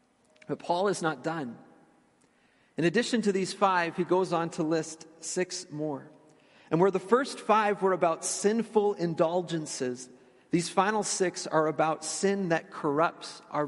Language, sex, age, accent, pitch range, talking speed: English, male, 40-59, American, 150-180 Hz, 155 wpm